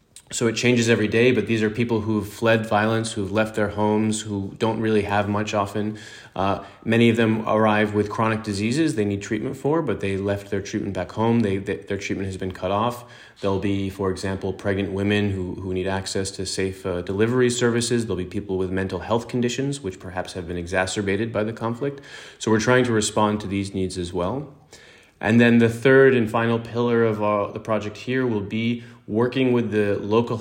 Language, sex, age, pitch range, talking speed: Czech, male, 30-49, 100-115 Hz, 210 wpm